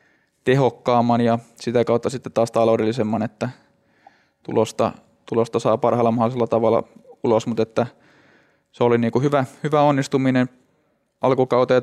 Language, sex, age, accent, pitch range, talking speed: Finnish, male, 20-39, native, 115-120 Hz, 120 wpm